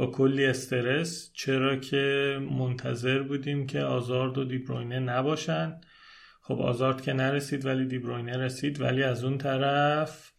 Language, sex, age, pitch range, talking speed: Persian, male, 30-49, 130-145 Hz, 135 wpm